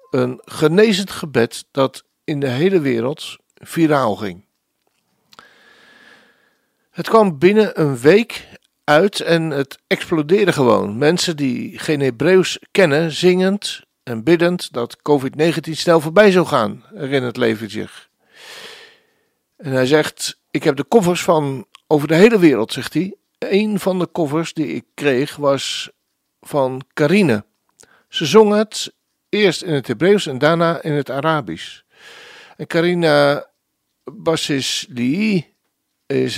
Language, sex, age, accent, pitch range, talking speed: Dutch, male, 60-79, Dutch, 140-190 Hz, 125 wpm